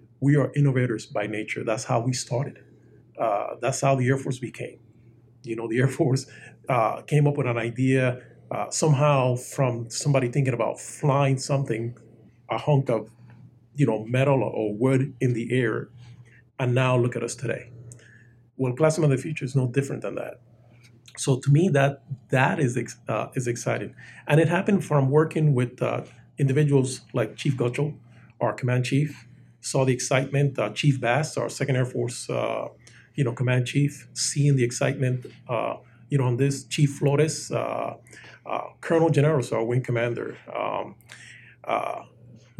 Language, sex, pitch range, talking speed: English, male, 120-140 Hz, 170 wpm